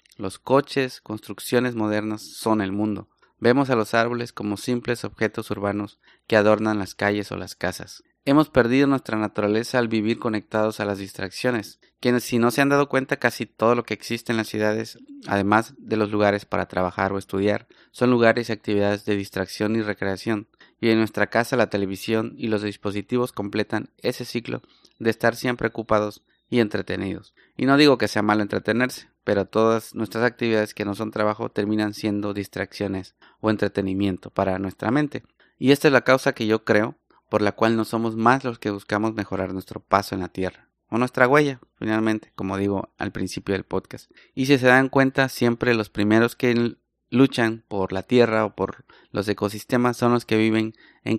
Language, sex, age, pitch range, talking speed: Spanish, male, 30-49, 105-120 Hz, 185 wpm